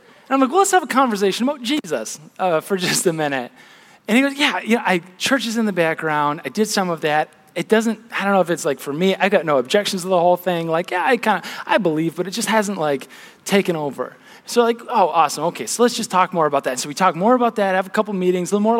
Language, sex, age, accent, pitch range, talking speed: English, male, 20-39, American, 180-235 Hz, 285 wpm